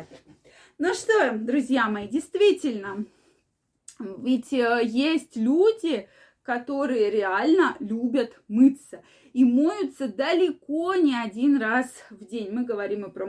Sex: female